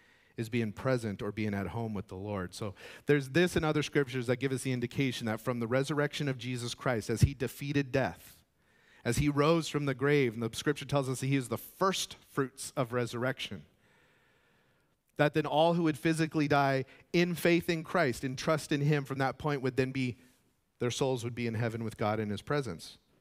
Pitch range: 105-140 Hz